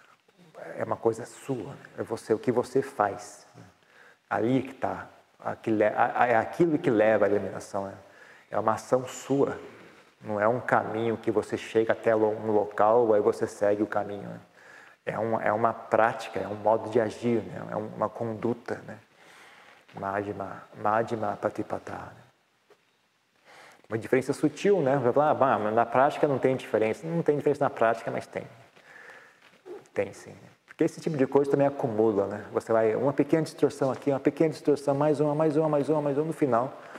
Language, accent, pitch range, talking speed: Portuguese, Brazilian, 110-140 Hz, 175 wpm